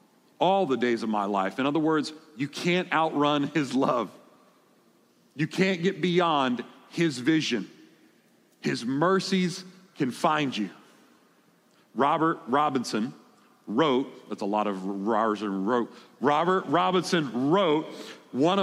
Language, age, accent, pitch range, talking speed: English, 40-59, American, 125-170 Hz, 120 wpm